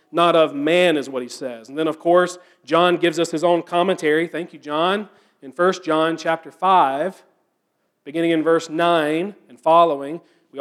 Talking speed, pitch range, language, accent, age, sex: 180 wpm, 165-205 Hz, English, American, 40-59, male